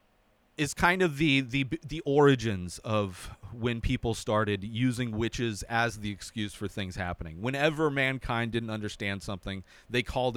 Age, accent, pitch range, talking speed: 30-49, American, 105-150 Hz, 150 wpm